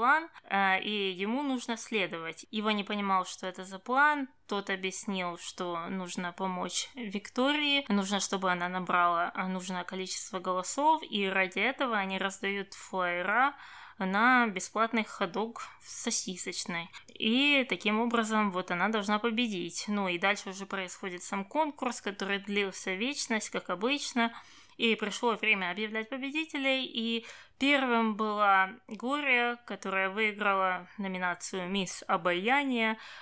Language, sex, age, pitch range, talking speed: Russian, female, 20-39, 190-245 Hz, 125 wpm